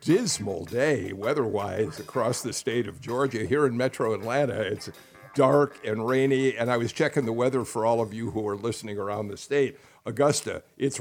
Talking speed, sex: 185 wpm, male